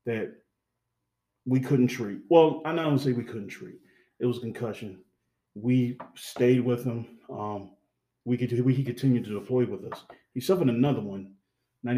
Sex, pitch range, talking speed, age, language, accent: male, 120-145 Hz, 170 wpm, 30-49, English, American